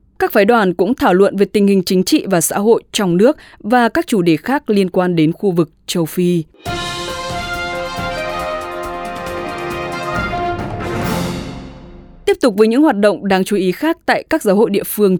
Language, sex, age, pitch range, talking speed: English, female, 20-39, 175-230 Hz, 175 wpm